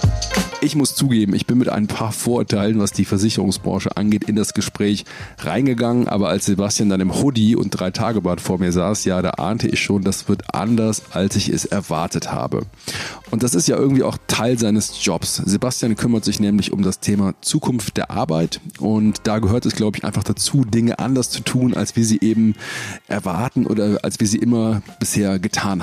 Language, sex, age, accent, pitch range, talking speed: German, male, 40-59, German, 100-120 Hz, 195 wpm